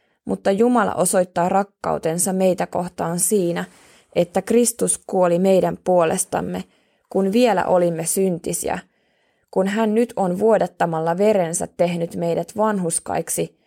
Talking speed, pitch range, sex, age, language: 110 wpm, 170-205 Hz, female, 20-39, Finnish